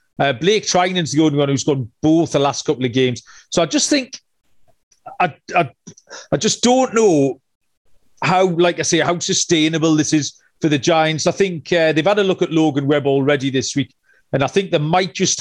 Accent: British